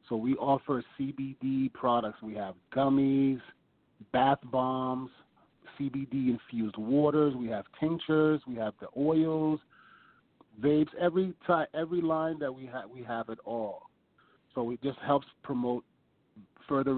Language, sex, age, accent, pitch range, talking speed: English, male, 40-59, American, 115-145 Hz, 130 wpm